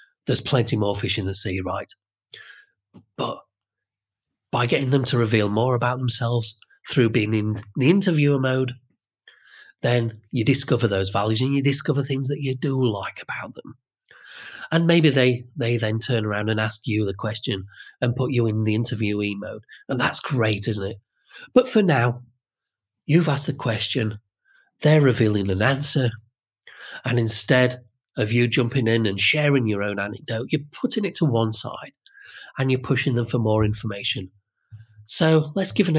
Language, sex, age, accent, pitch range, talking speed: English, male, 40-59, British, 110-140 Hz, 170 wpm